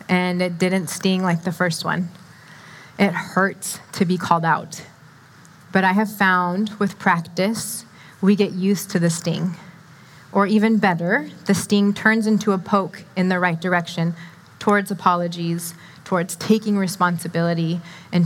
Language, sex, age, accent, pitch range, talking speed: English, female, 20-39, American, 170-200 Hz, 150 wpm